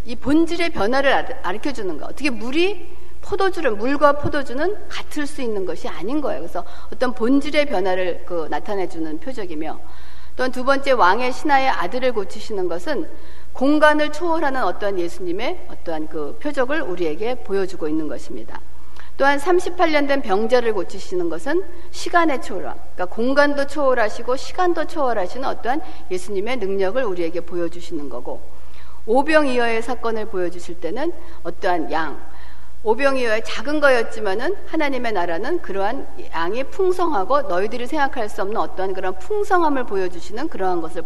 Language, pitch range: Korean, 185-305 Hz